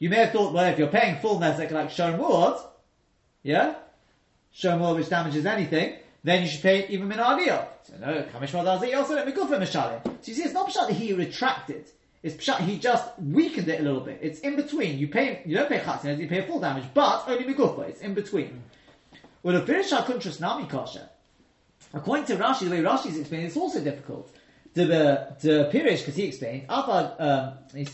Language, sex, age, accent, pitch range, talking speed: English, male, 30-49, British, 145-200 Hz, 190 wpm